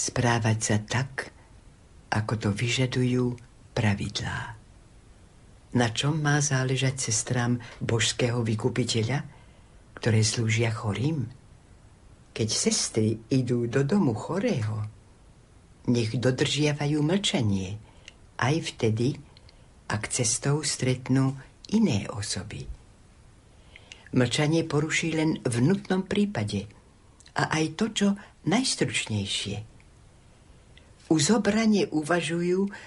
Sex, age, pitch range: female, 60-79, 105-145 Hz